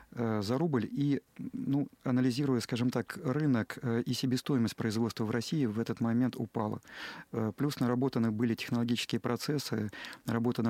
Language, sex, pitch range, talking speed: Russian, male, 110-125 Hz, 130 wpm